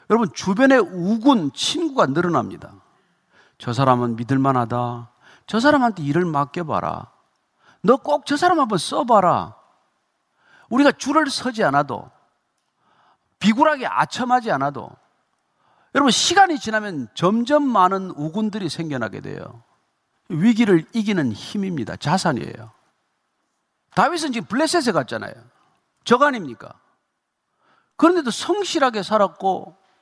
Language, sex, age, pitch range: Korean, male, 40-59, 150-245 Hz